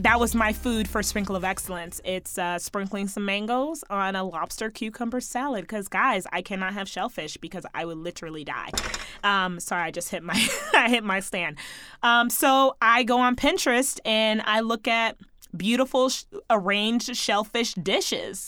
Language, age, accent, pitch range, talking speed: English, 20-39, American, 195-270 Hz, 175 wpm